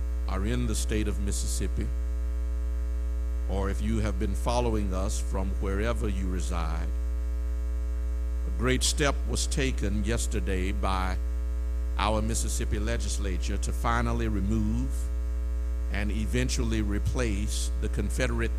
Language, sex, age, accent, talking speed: English, male, 50-69, American, 115 wpm